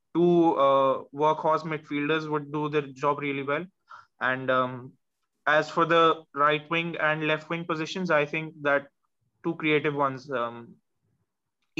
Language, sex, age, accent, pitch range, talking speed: Hindi, male, 20-39, native, 135-160 Hz, 145 wpm